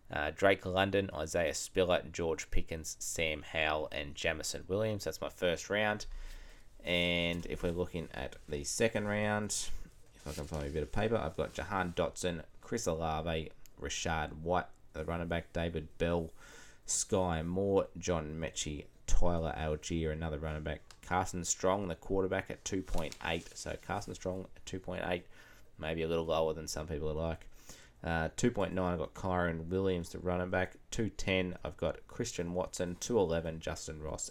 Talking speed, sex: 160 wpm, male